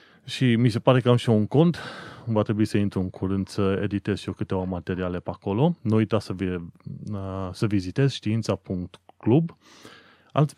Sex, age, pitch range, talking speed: male, 30-49, 100-135 Hz, 175 wpm